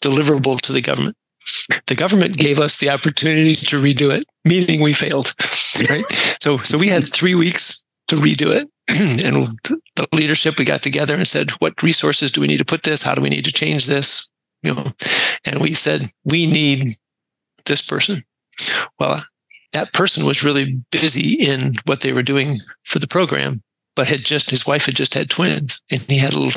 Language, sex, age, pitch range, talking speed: English, male, 50-69, 135-165 Hz, 195 wpm